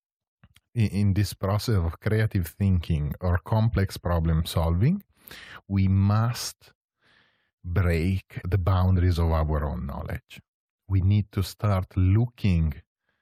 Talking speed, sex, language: 110 wpm, male, English